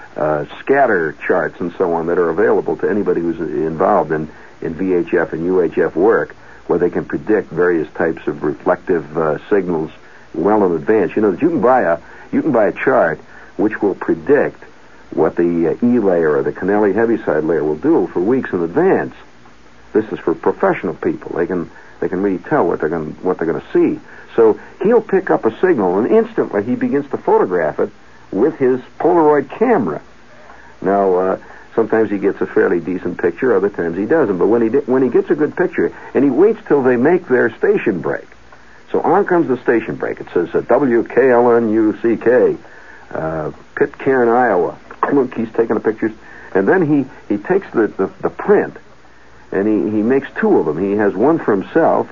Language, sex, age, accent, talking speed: English, male, 60-79, American, 195 wpm